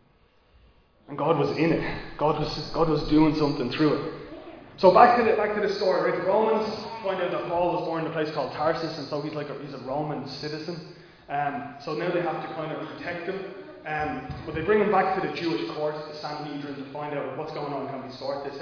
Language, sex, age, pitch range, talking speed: English, male, 20-39, 145-170 Hz, 250 wpm